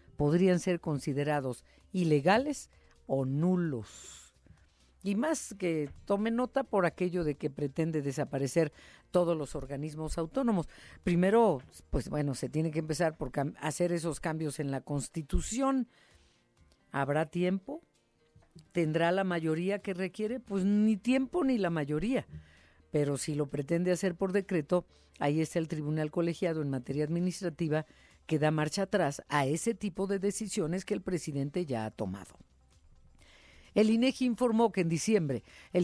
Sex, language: female, Spanish